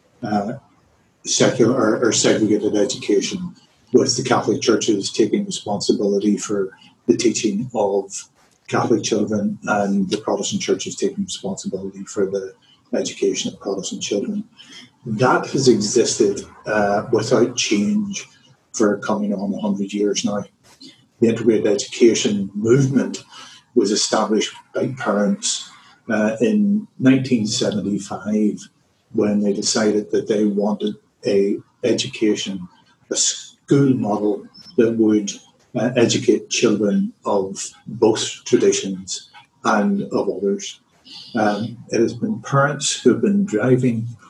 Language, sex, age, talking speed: English, male, 40-59, 110 wpm